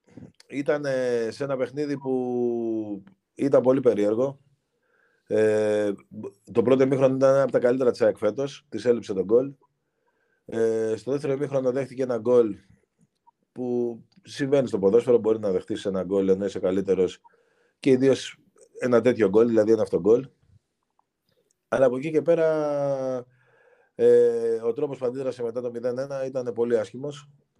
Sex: male